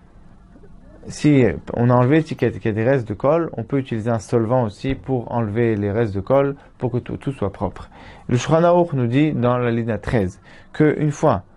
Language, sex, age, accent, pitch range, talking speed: French, male, 20-39, French, 110-145 Hz, 215 wpm